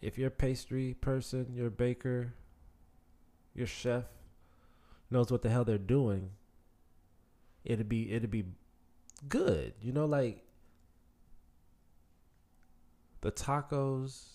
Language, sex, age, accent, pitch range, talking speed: English, male, 20-39, American, 80-105 Hz, 100 wpm